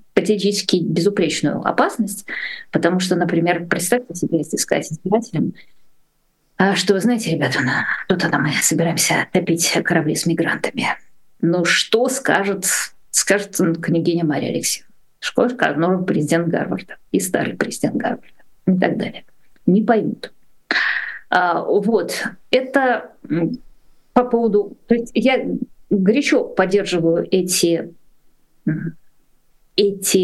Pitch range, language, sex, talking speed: 165-210 Hz, Russian, female, 110 wpm